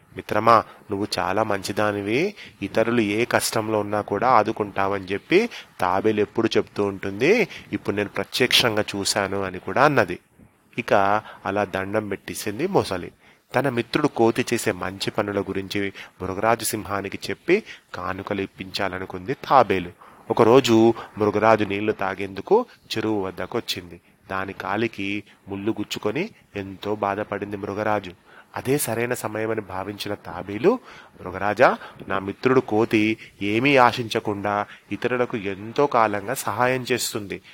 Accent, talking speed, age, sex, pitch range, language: native, 115 wpm, 30-49, male, 100-115 Hz, Telugu